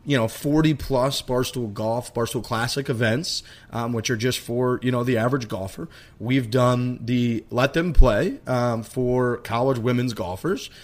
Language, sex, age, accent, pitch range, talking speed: English, male, 30-49, American, 115-135 Hz, 165 wpm